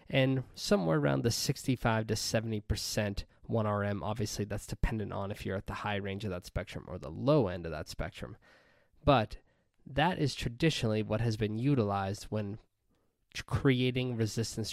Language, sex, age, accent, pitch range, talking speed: English, male, 20-39, American, 105-130 Hz, 160 wpm